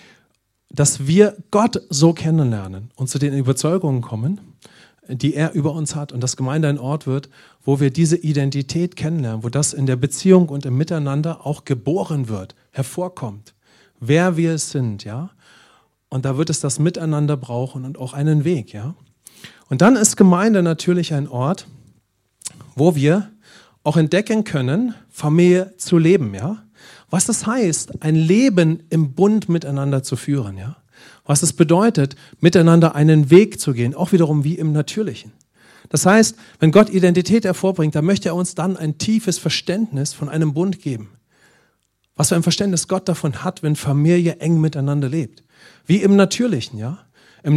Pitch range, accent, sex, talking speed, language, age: 135-180 Hz, German, male, 165 wpm, English, 40-59